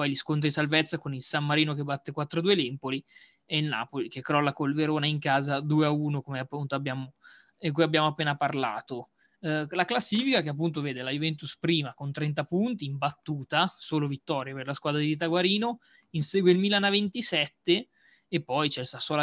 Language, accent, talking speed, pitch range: Italian, native, 190 wpm, 145-165 Hz